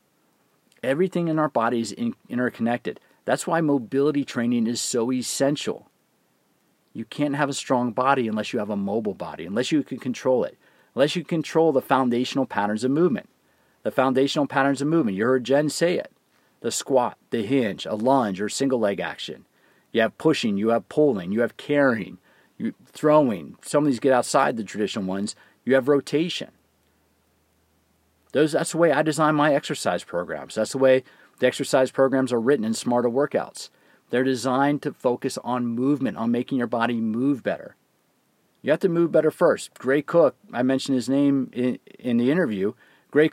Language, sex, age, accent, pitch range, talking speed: English, male, 40-59, American, 120-145 Hz, 180 wpm